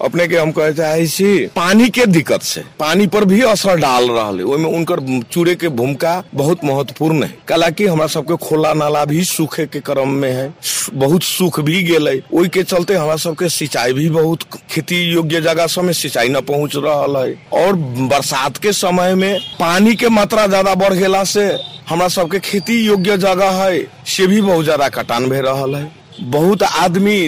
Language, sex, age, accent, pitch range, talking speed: English, male, 50-69, Indian, 155-190 Hz, 145 wpm